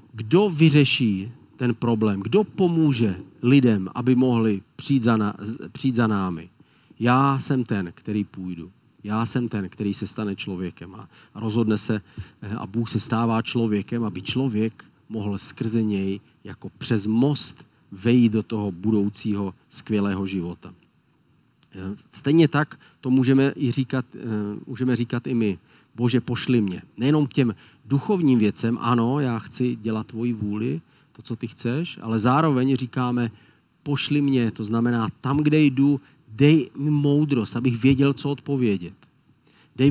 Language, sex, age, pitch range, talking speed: Czech, male, 40-59, 110-135 Hz, 140 wpm